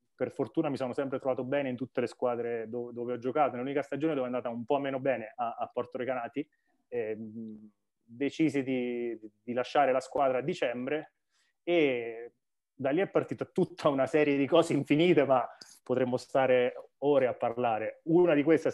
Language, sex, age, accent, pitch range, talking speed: Italian, male, 20-39, native, 125-150 Hz, 185 wpm